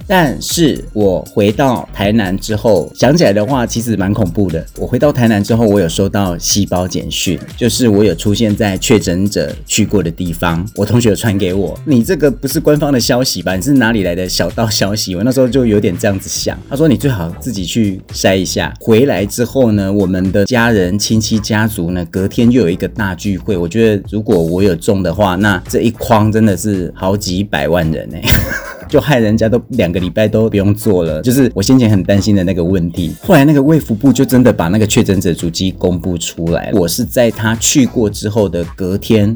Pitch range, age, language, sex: 90-115 Hz, 30-49, Chinese, male